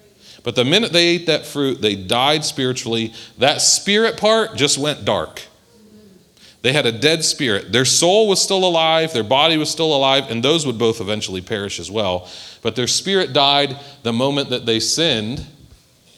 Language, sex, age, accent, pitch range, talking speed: English, male, 40-59, American, 105-140 Hz, 180 wpm